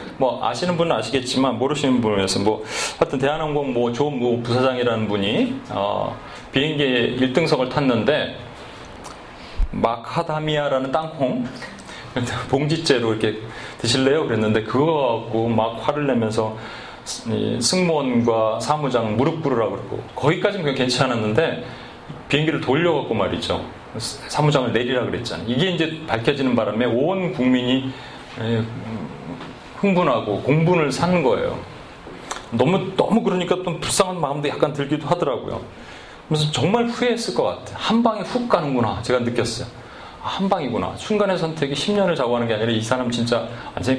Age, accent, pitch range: 30-49, native, 120-160 Hz